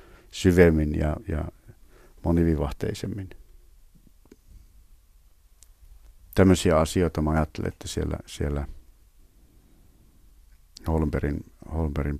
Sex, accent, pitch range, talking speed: male, native, 75-90 Hz, 60 wpm